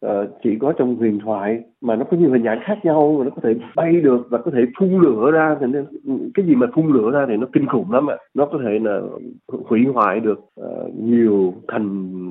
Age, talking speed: 20-39, 235 wpm